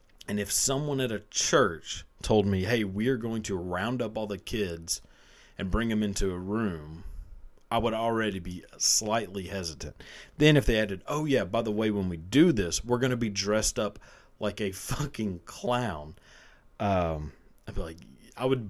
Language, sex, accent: English, male, American